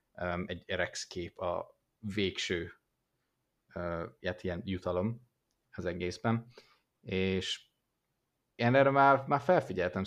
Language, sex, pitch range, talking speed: Hungarian, male, 90-110 Hz, 100 wpm